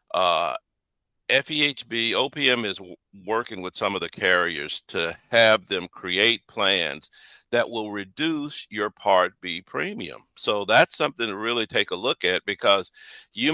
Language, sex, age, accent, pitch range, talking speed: English, male, 50-69, American, 95-120 Hz, 145 wpm